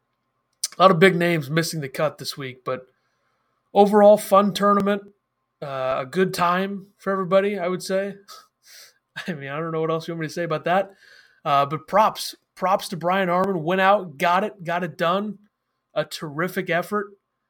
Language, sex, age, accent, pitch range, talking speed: English, male, 30-49, American, 155-195 Hz, 185 wpm